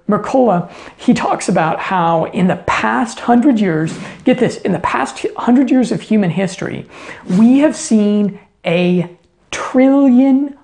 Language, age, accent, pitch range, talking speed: English, 50-69, American, 175-230 Hz, 140 wpm